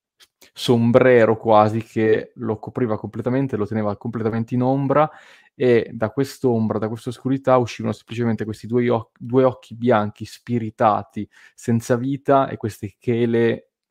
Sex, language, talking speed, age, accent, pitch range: male, Italian, 135 wpm, 20-39, native, 110-125 Hz